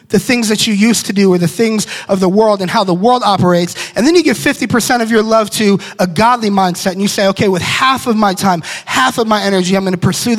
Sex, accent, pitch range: male, American, 170-220 Hz